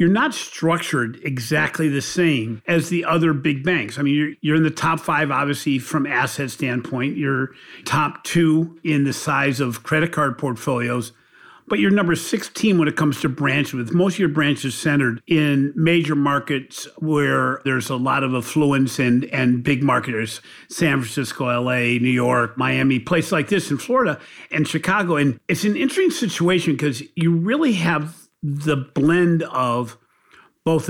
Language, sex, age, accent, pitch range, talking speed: English, male, 50-69, American, 135-165 Hz, 165 wpm